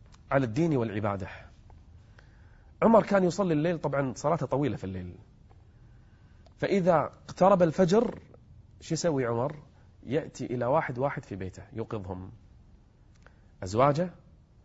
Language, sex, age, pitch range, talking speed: Arabic, male, 30-49, 115-160 Hz, 105 wpm